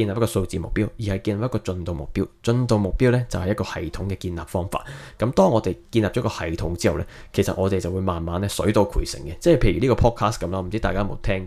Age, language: 20-39, Chinese